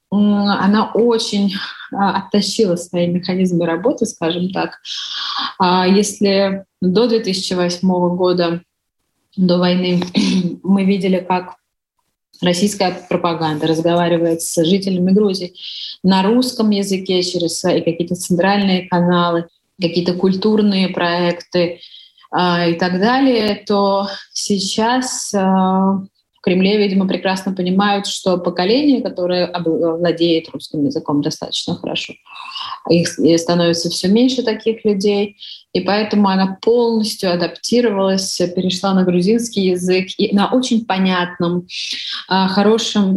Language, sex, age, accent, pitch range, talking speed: Russian, female, 20-39, native, 175-205 Hz, 95 wpm